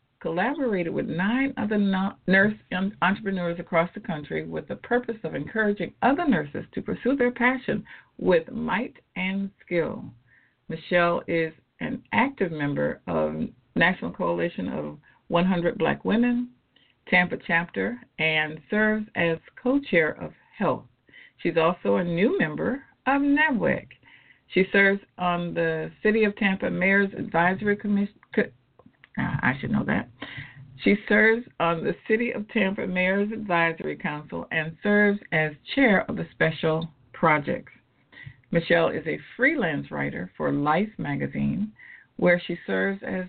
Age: 50-69